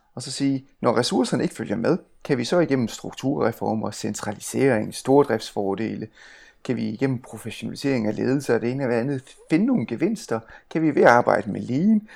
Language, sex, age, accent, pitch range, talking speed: Danish, male, 30-49, native, 120-175 Hz, 180 wpm